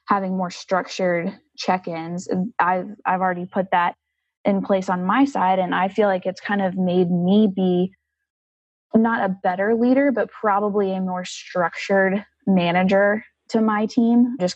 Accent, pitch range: American, 180-205 Hz